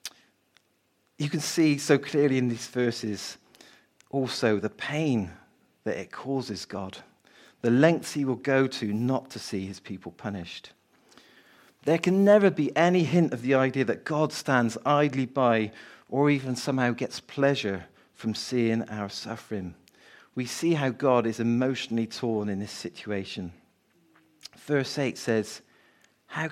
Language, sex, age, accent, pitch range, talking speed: English, male, 40-59, British, 105-130 Hz, 145 wpm